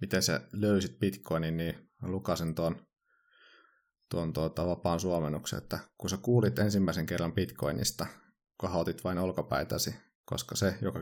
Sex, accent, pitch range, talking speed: male, native, 85-110 Hz, 135 wpm